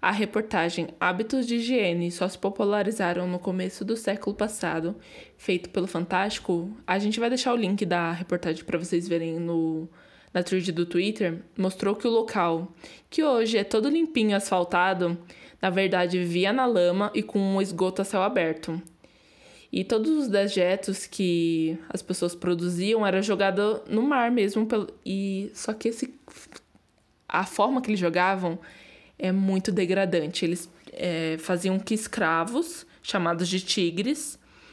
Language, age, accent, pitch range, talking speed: Portuguese, 20-39, Brazilian, 175-210 Hz, 150 wpm